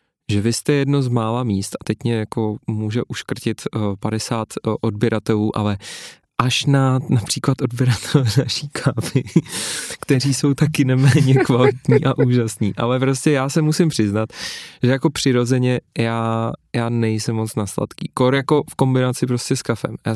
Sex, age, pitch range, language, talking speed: male, 20-39, 110-135 Hz, Czech, 155 wpm